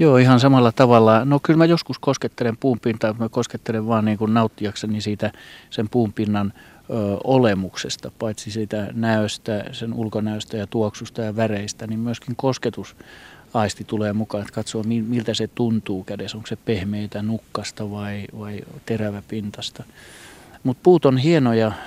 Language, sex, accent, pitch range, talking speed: Finnish, male, native, 105-120 Hz, 150 wpm